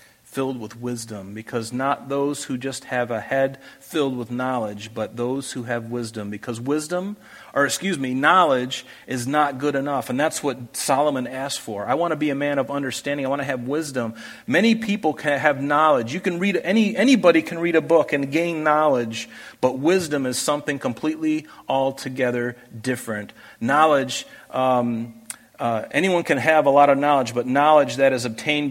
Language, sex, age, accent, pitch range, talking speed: English, male, 40-59, American, 115-145 Hz, 180 wpm